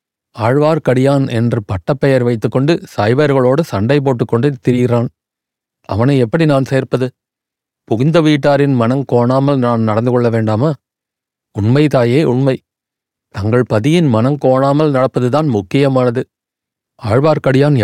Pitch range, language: 115-140 Hz, Tamil